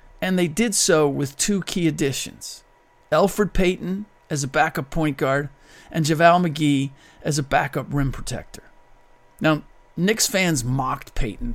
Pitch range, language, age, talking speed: 130-160 Hz, English, 40-59, 145 wpm